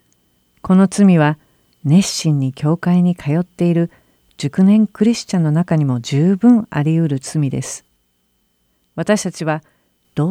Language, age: Japanese, 50-69